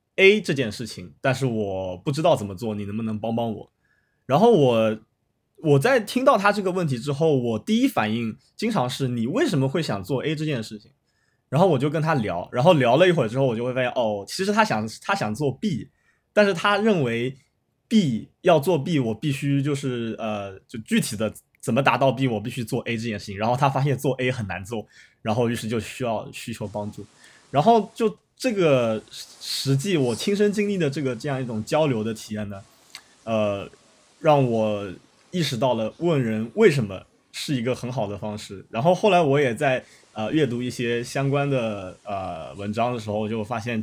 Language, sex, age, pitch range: Chinese, male, 20-39, 110-155 Hz